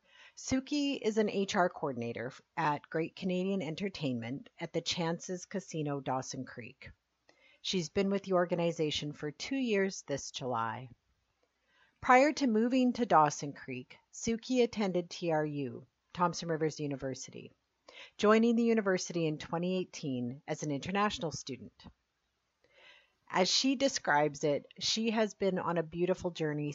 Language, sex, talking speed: English, female, 130 wpm